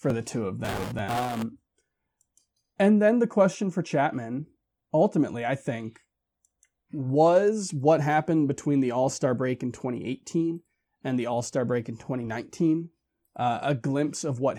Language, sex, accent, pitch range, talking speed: English, male, American, 120-155 Hz, 150 wpm